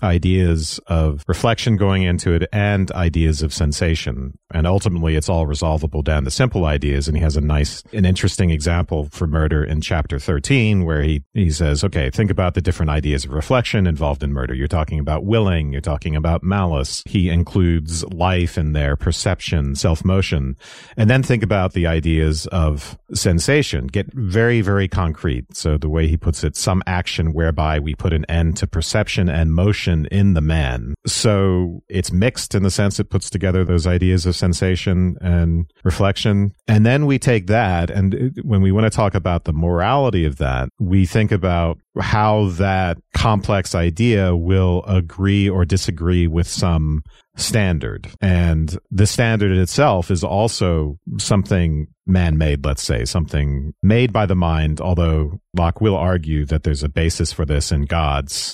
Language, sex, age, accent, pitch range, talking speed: English, male, 40-59, American, 80-100 Hz, 170 wpm